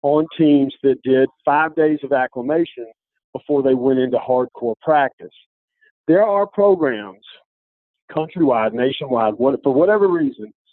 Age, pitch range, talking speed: 50-69, 135-170 Hz, 125 wpm